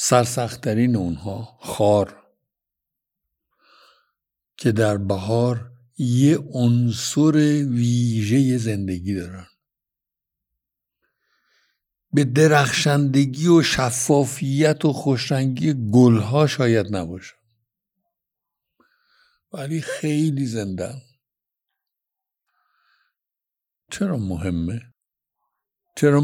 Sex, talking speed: male, 60 wpm